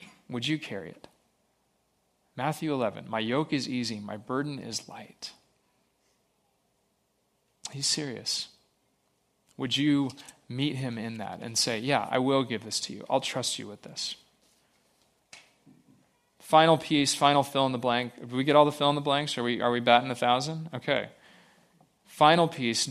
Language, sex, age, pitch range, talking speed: English, male, 30-49, 120-145 Hz, 160 wpm